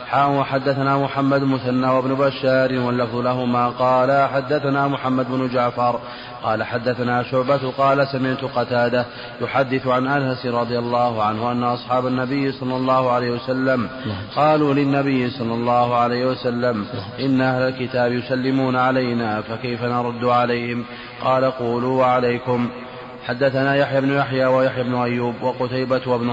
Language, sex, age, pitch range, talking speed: Arabic, male, 30-49, 120-130 Hz, 130 wpm